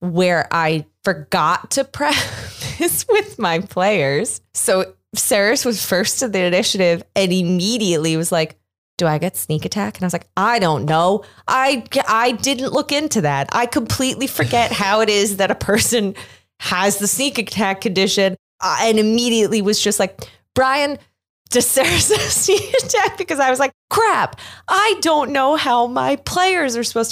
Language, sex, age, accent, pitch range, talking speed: English, female, 20-39, American, 160-240 Hz, 165 wpm